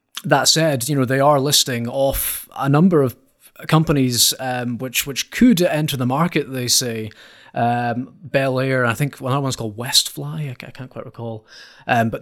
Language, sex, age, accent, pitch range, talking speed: English, male, 30-49, British, 115-145 Hz, 185 wpm